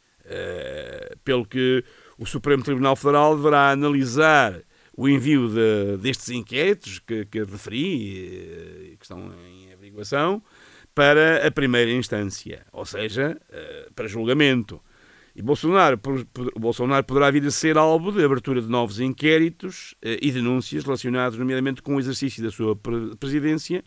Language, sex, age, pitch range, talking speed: Portuguese, male, 50-69, 110-140 Hz, 140 wpm